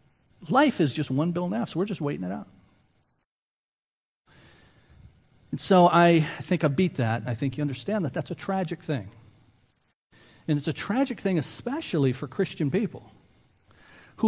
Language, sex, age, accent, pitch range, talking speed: English, male, 50-69, American, 120-170 Hz, 170 wpm